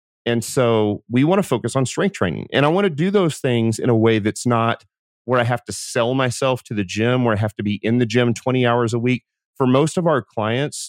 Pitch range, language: 105-130 Hz, English